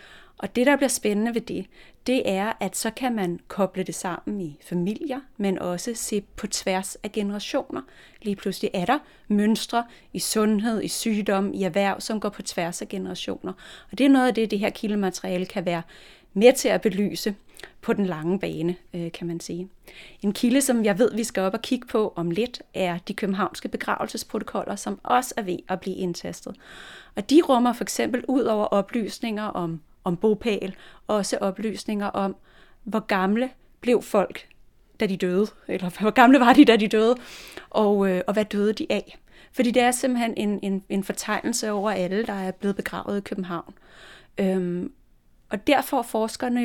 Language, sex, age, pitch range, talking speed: Danish, female, 30-49, 190-235 Hz, 185 wpm